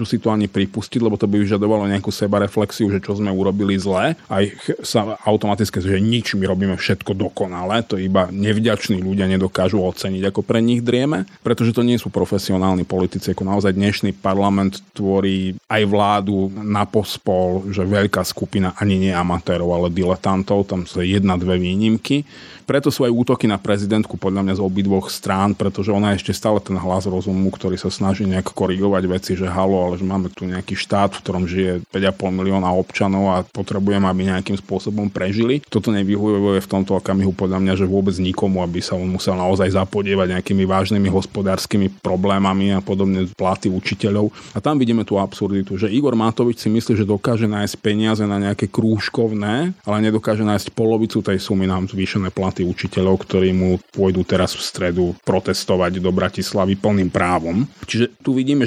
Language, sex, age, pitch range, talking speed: Slovak, male, 30-49, 95-105 Hz, 175 wpm